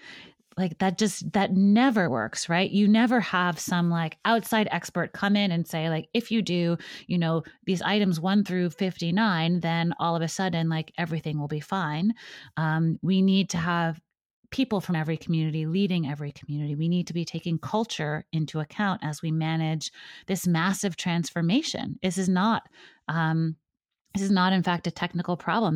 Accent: American